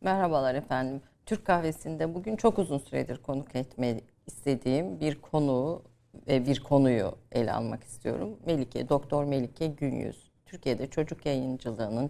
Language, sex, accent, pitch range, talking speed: Turkish, female, native, 130-185 Hz, 130 wpm